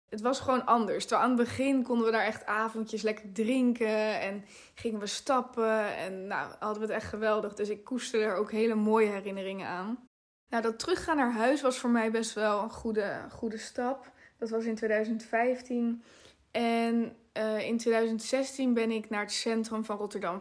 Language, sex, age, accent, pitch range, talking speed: Dutch, female, 20-39, Dutch, 210-235 Hz, 190 wpm